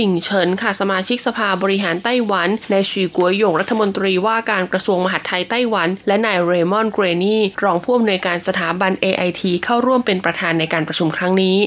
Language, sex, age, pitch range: Thai, female, 20-39, 180-230 Hz